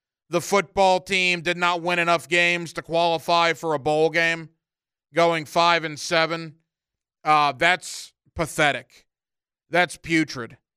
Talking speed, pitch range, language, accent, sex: 125 wpm, 160-190 Hz, English, American, male